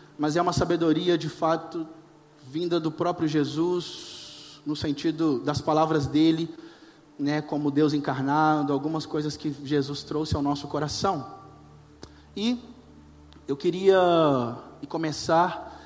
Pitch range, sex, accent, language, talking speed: 145-175 Hz, male, Brazilian, Portuguese, 115 wpm